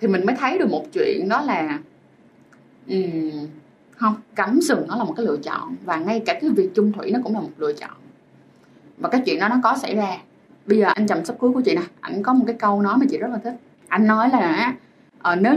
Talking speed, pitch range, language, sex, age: 245 wpm, 185-250 Hz, Vietnamese, female, 20-39